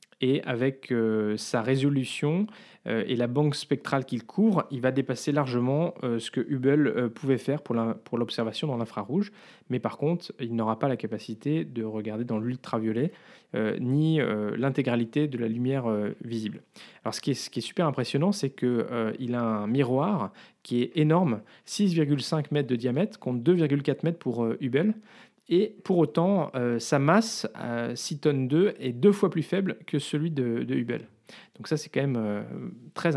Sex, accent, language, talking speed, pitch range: male, French, French, 190 wpm, 120-165 Hz